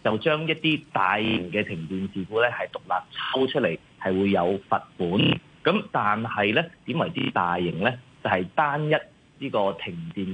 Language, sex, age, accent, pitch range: Chinese, male, 30-49, native, 95-150 Hz